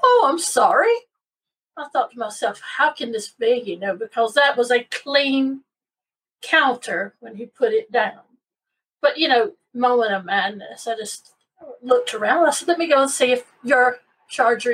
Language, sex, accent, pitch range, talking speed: English, female, American, 235-340 Hz, 180 wpm